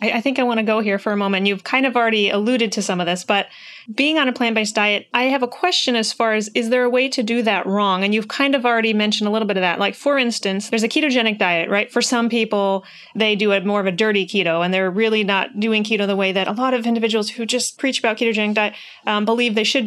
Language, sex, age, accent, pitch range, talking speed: English, female, 30-49, American, 205-250 Hz, 280 wpm